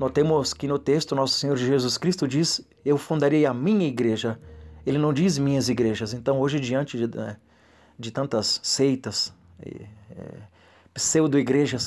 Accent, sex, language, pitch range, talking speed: Brazilian, male, Portuguese, 110-150 Hz, 145 wpm